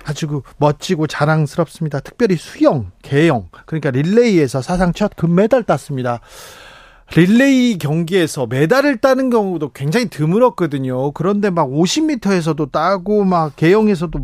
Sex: male